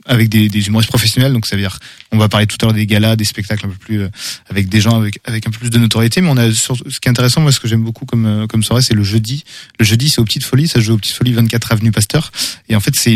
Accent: French